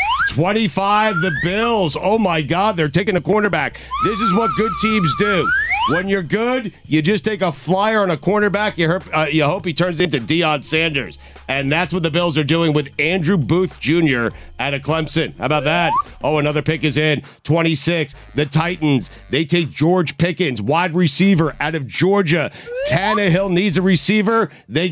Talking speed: 175 wpm